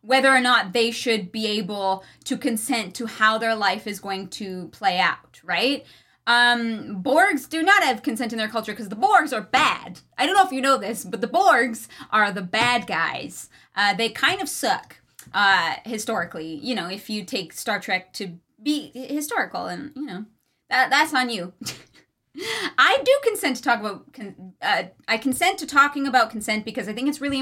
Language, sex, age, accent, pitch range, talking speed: English, female, 20-39, American, 215-270 Hz, 200 wpm